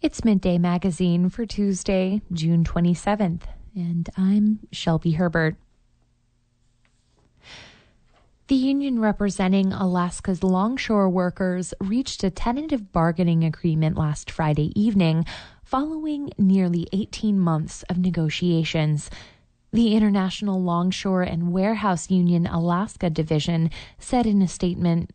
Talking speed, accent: 105 wpm, American